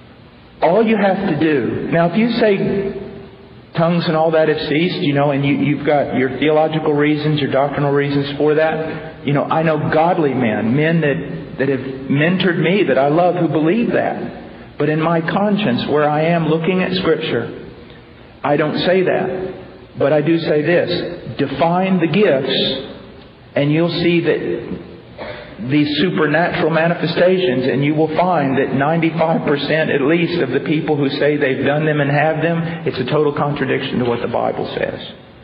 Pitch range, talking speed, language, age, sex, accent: 145-170 Hz, 175 wpm, English, 50-69, male, American